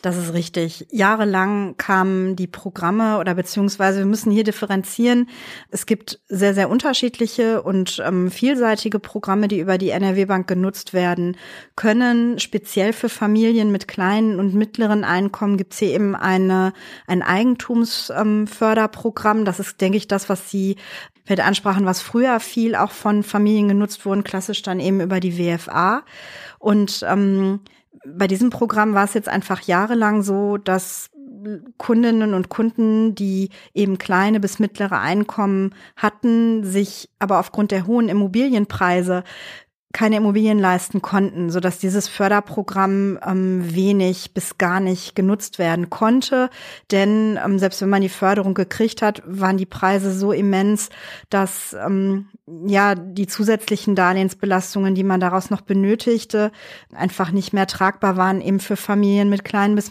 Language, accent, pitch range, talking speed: German, German, 190-215 Hz, 145 wpm